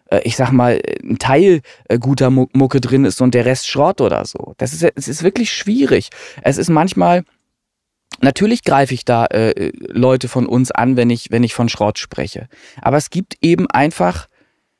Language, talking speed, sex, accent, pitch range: German, 185 wpm, male, German, 130-155 Hz